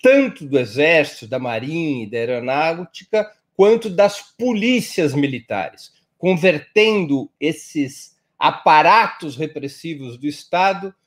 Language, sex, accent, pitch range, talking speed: Portuguese, male, Brazilian, 135-195 Hz, 100 wpm